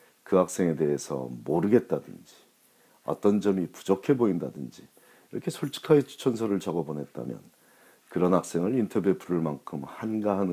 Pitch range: 80-110 Hz